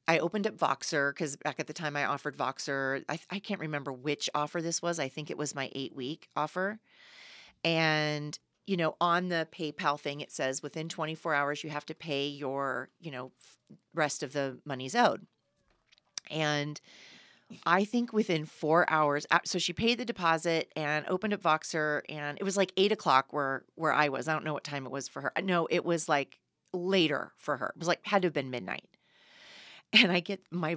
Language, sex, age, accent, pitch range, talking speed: English, female, 30-49, American, 145-175 Hz, 205 wpm